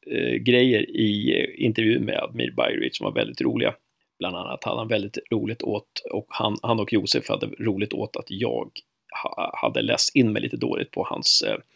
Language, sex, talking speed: Swedish, male, 180 wpm